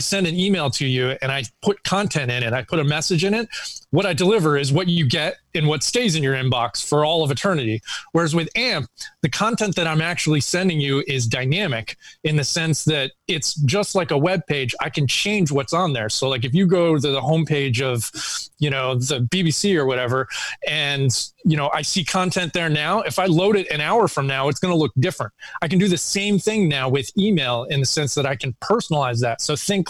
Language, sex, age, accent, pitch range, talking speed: English, male, 30-49, American, 135-175 Hz, 235 wpm